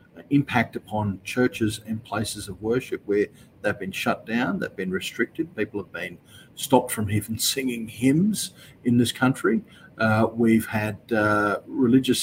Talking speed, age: 150 wpm, 40-59